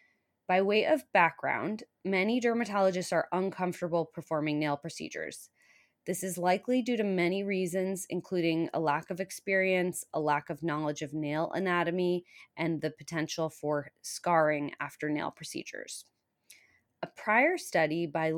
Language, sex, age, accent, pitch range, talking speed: English, female, 20-39, American, 155-190 Hz, 135 wpm